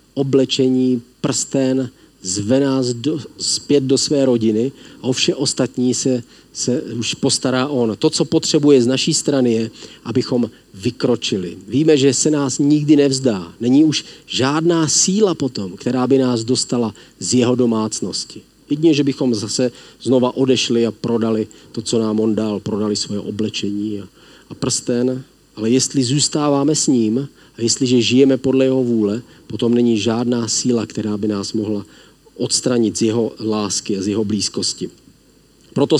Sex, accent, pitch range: male, native, 115-140 Hz